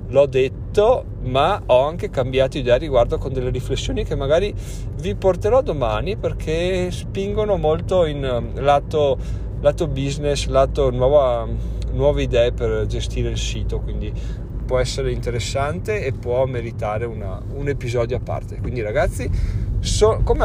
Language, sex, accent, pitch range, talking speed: Italian, male, native, 115-140 Hz, 130 wpm